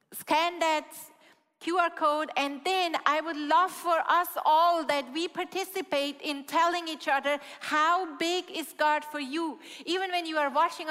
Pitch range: 275-340 Hz